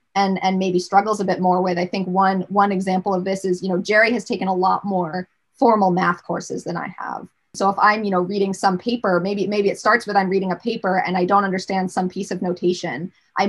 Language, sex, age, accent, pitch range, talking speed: English, female, 20-39, American, 190-230 Hz, 250 wpm